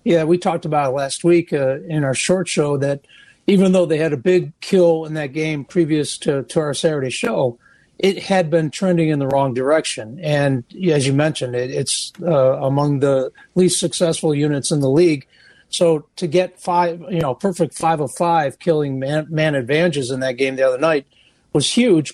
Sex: male